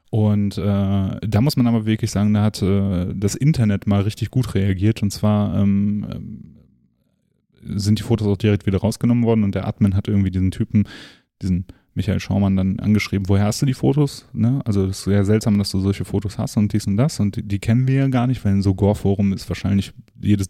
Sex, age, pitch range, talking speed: male, 10-29, 95-110 Hz, 215 wpm